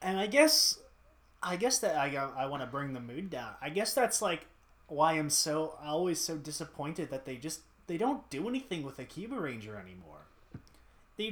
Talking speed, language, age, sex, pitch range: 185 wpm, English, 20-39, male, 130-175 Hz